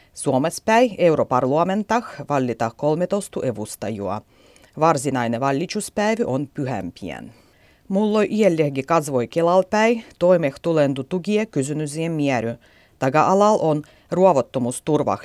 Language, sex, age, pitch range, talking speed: Finnish, female, 40-59, 130-190 Hz, 75 wpm